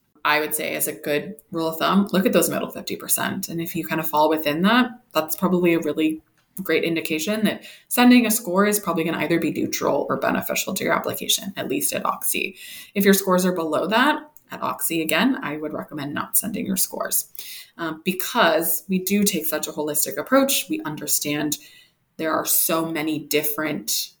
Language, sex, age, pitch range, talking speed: English, female, 20-39, 155-195 Hz, 200 wpm